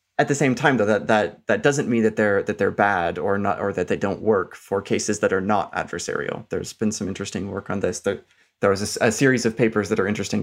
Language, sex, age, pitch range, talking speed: English, male, 20-39, 105-130 Hz, 265 wpm